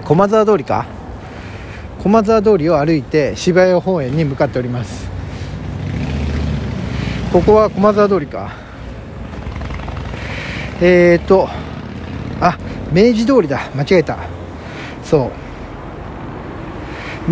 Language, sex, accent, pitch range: Japanese, male, native, 110-185 Hz